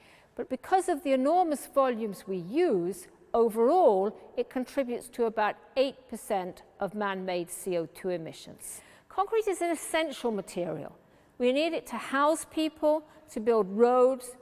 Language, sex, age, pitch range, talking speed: Arabic, female, 50-69, 195-275 Hz, 135 wpm